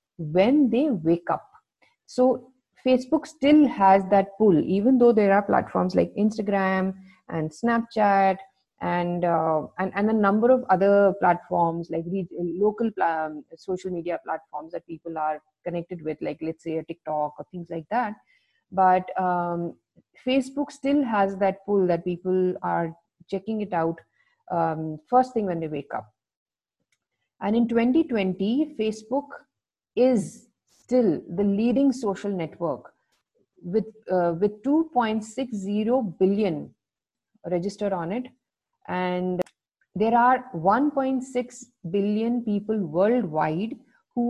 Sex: female